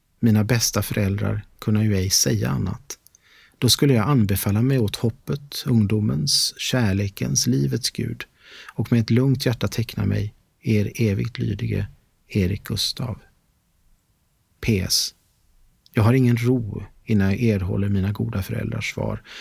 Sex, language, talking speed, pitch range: male, Swedish, 135 wpm, 105-120 Hz